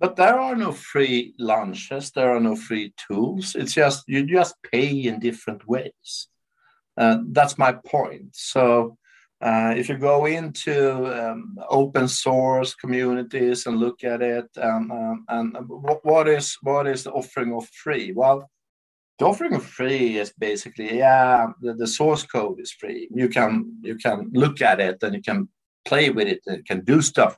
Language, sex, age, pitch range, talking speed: English, male, 60-79, 115-155 Hz, 175 wpm